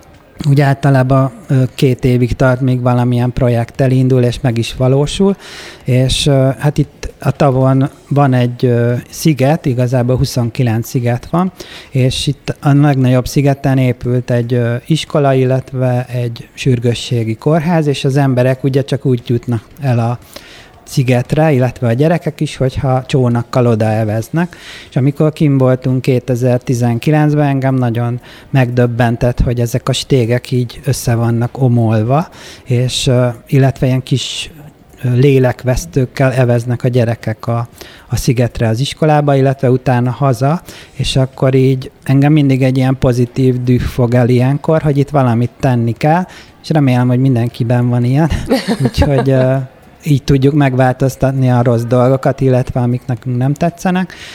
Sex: male